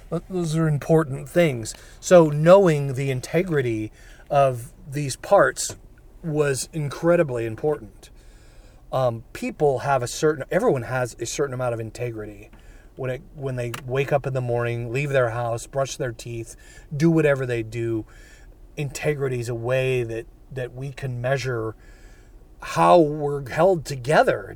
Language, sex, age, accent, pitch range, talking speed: English, male, 40-59, American, 120-150 Hz, 140 wpm